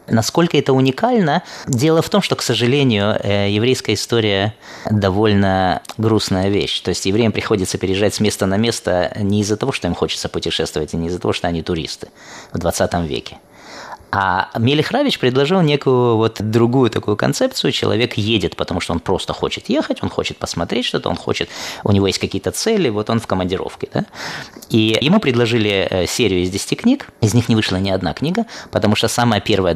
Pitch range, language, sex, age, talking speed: 95-120 Hz, Russian, male, 20-39, 180 wpm